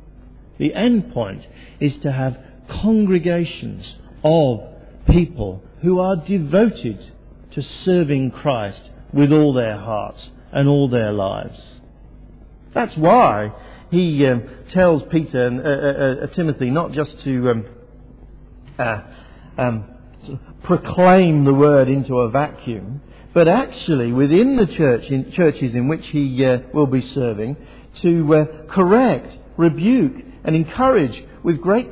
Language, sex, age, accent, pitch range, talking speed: English, male, 50-69, British, 130-200 Hz, 130 wpm